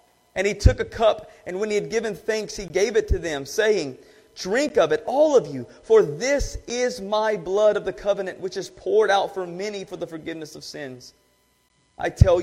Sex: male